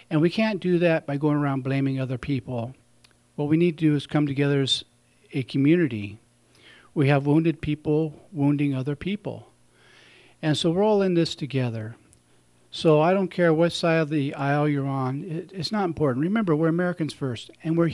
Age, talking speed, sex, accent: 50-69, 185 wpm, male, American